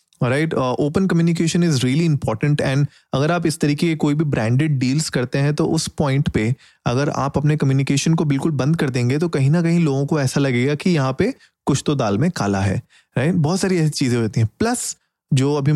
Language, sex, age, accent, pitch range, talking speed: Hindi, male, 30-49, native, 120-165 Hz, 220 wpm